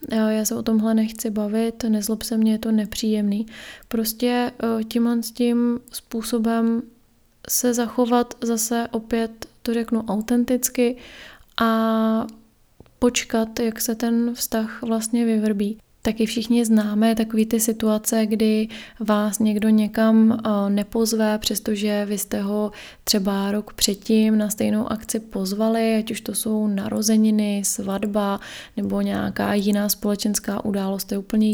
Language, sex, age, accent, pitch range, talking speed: Czech, female, 20-39, native, 215-230 Hz, 125 wpm